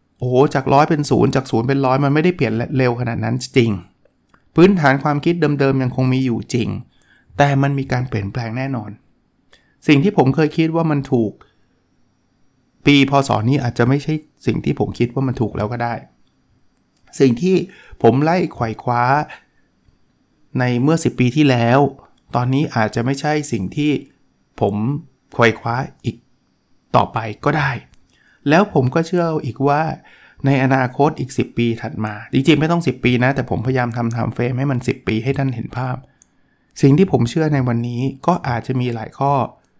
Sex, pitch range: male, 115-145 Hz